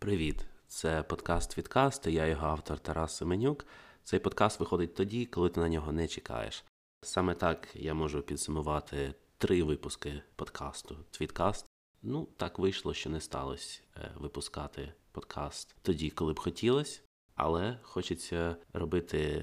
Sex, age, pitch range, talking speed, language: male, 30-49, 75-95 Hz, 135 wpm, Ukrainian